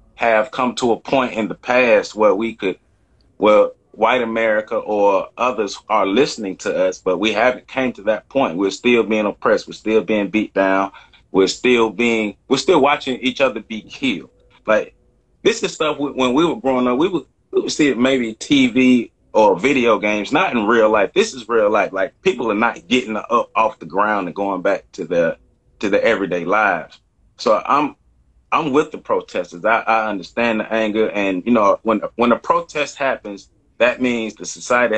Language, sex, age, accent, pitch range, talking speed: English, male, 30-49, American, 105-130 Hz, 195 wpm